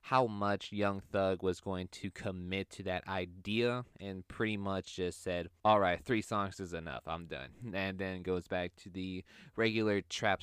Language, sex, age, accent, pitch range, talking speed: English, male, 20-39, American, 90-105 Hz, 180 wpm